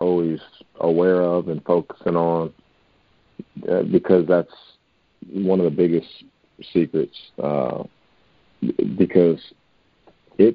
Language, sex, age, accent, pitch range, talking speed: English, male, 50-69, American, 80-95 Hz, 95 wpm